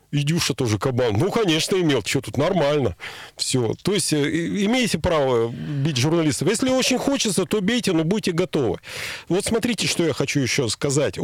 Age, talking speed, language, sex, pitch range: 40-59, 165 wpm, Russian, male, 140-180 Hz